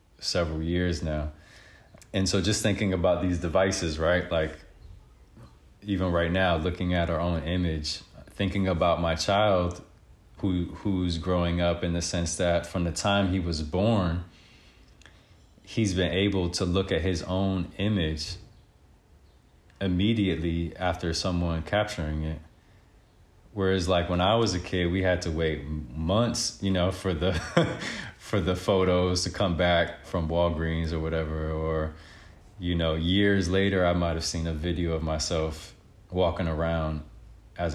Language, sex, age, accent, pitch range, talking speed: English, male, 20-39, American, 80-95 Hz, 150 wpm